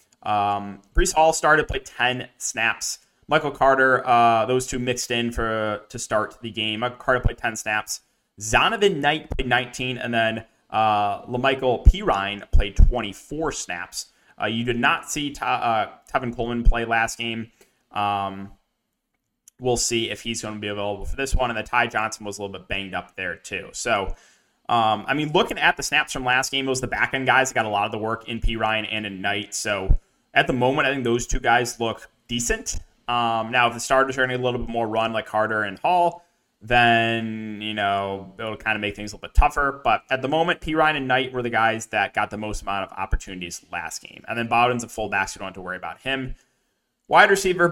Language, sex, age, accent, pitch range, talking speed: English, male, 20-39, American, 110-130 Hz, 225 wpm